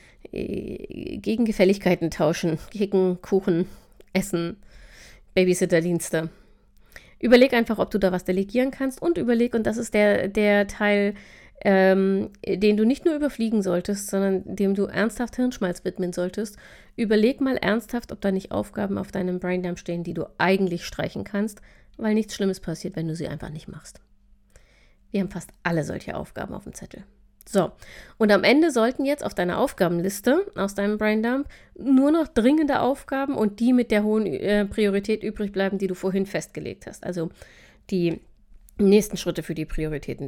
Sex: female